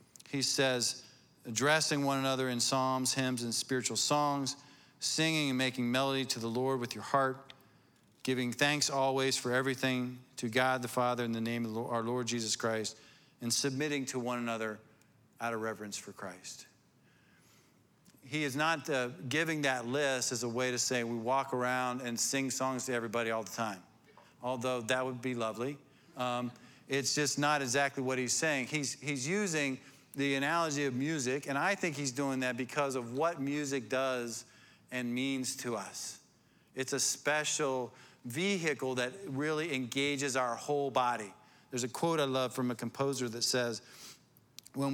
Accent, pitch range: American, 125-140 Hz